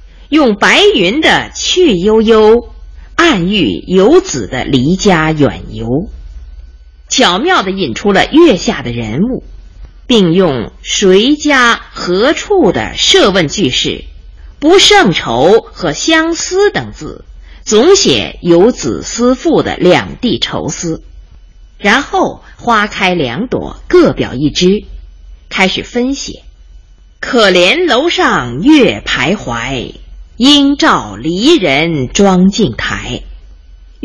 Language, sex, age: Chinese, female, 50-69